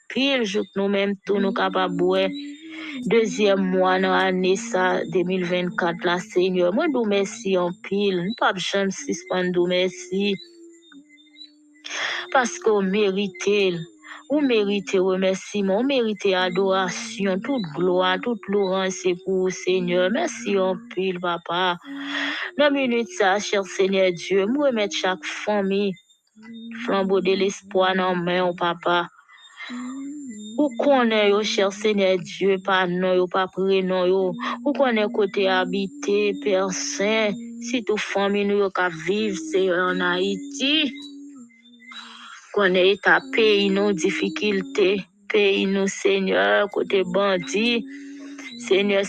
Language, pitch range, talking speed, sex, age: English, 185-230 Hz, 115 wpm, female, 20-39